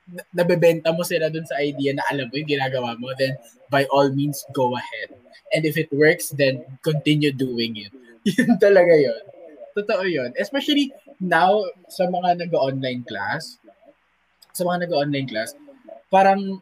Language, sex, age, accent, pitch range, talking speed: Filipino, male, 20-39, native, 125-180 Hz, 160 wpm